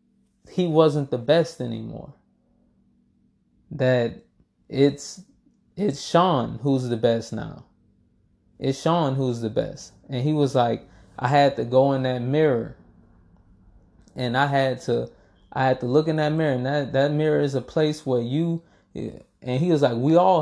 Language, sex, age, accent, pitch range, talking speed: English, male, 20-39, American, 125-150 Hz, 165 wpm